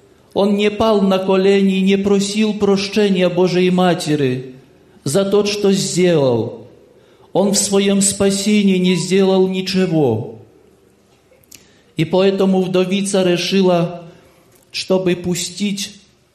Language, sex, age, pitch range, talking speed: Polish, male, 50-69, 155-195 Hz, 105 wpm